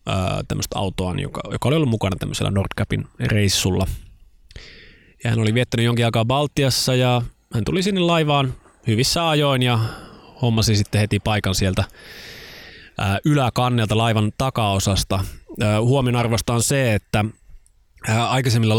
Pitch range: 95-120 Hz